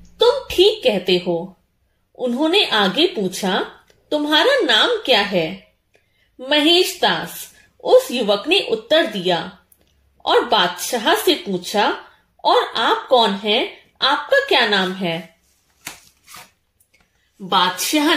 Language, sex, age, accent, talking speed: Hindi, female, 30-49, native, 100 wpm